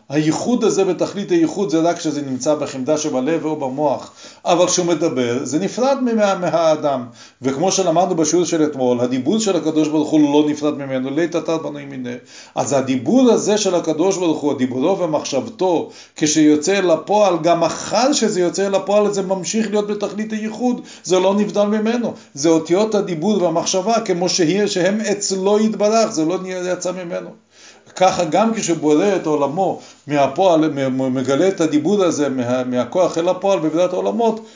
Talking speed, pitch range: 160 wpm, 150-200 Hz